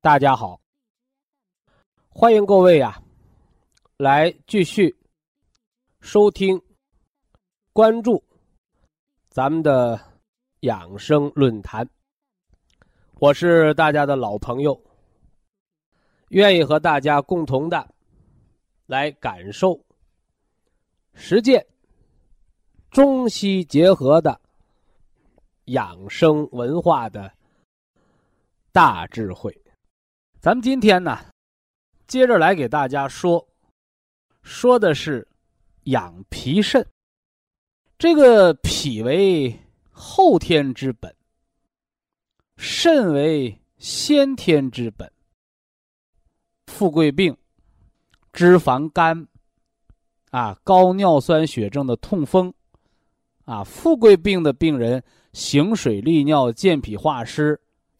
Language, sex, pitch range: Chinese, male, 130-200 Hz